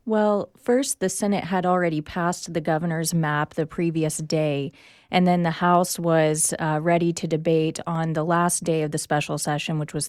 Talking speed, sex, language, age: 190 wpm, female, English, 30-49